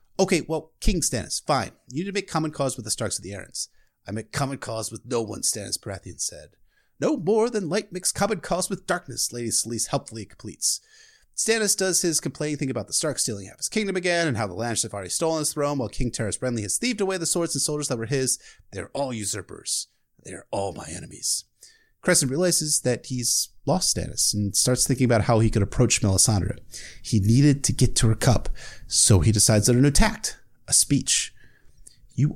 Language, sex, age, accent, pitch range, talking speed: English, male, 30-49, American, 110-155 Hz, 210 wpm